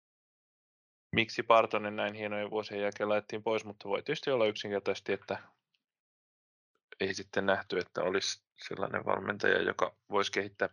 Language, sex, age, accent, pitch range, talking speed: Finnish, male, 20-39, native, 100-130 Hz, 135 wpm